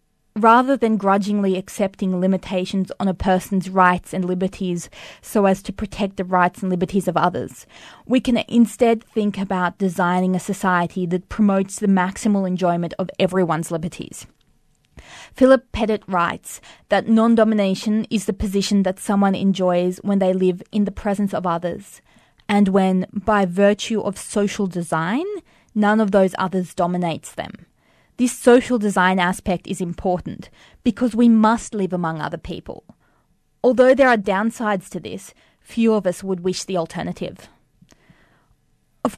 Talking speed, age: 145 wpm, 20-39